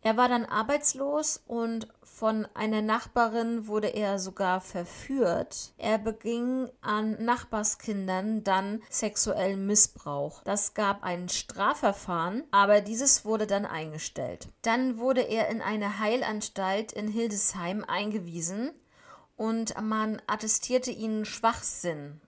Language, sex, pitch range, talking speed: German, female, 190-230 Hz, 115 wpm